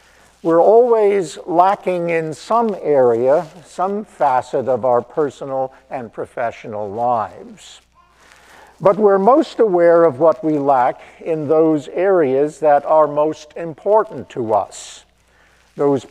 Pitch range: 130-170 Hz